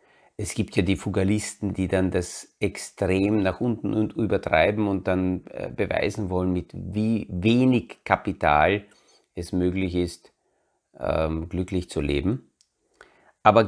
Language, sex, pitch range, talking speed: German, male, 90-115 Hz, 125 wpm